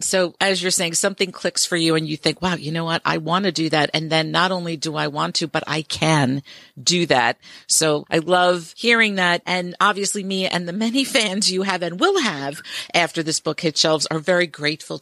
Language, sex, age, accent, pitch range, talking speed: English, female, 50-69, American, 155-190 Hz, 230 wpm